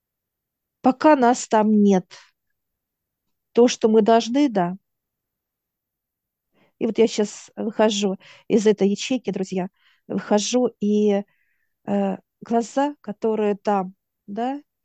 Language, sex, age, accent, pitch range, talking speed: Russian, female, 50-69, native, 195-230 Hz, 100 wpm